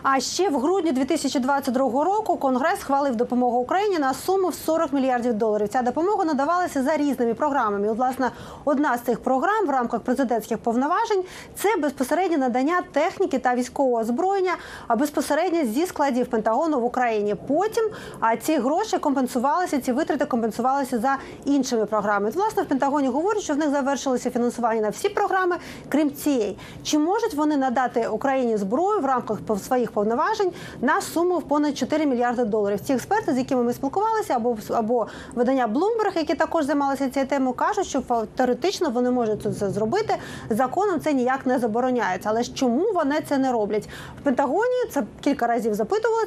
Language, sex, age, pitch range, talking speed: Ukrainian, female, 30-49, 245-330 Hz, 165 wpm